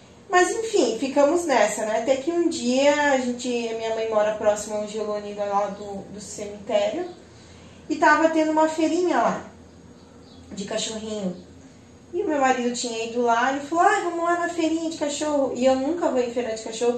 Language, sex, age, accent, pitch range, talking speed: Portuguese, female, 10-29, Brazilian, 210-265 Hz, 190 wpm